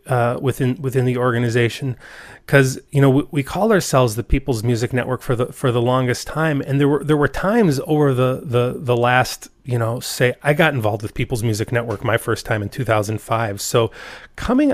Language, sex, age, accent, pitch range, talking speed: English, male, 30-49, American, 120-150 Hz, 205 wpm